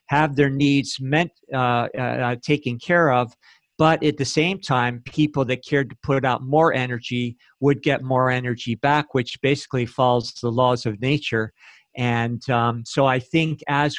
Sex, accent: male, American